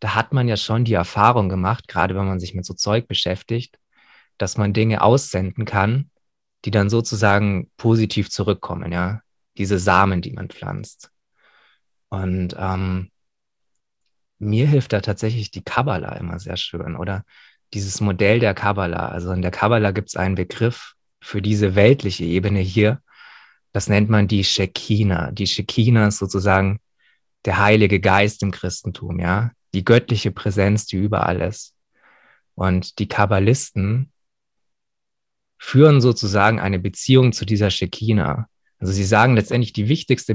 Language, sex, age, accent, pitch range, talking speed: German, male, 20-39, German, 95-110 Hz, 145 wpm